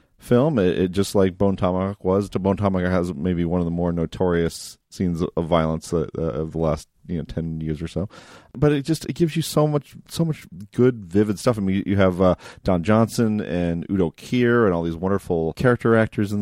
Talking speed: 225 wpm